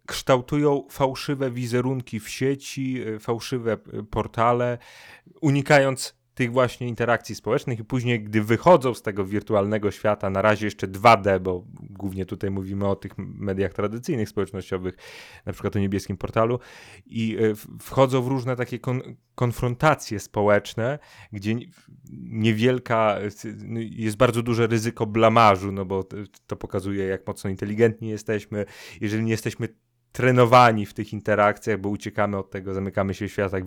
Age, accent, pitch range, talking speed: 30-49, native, 100-120 Hz, 135 wpm